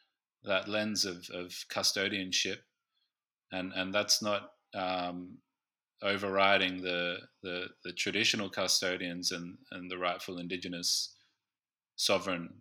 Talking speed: 105 wpm